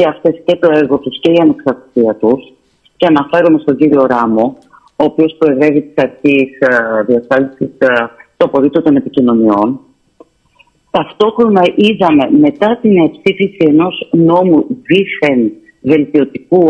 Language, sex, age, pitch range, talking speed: Greek, female, 40-59, 140-190 Hz, 120 wpm